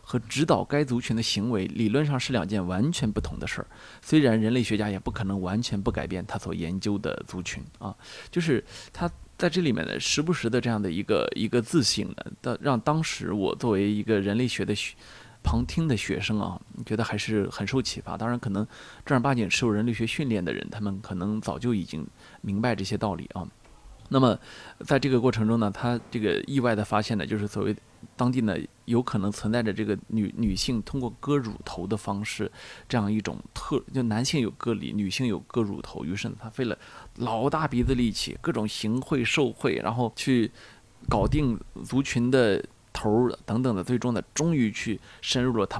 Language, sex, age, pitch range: Chinese, male, 20-39, 105-125 Hz